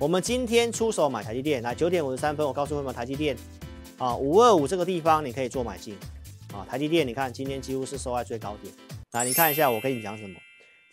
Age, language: 40-59, Chinese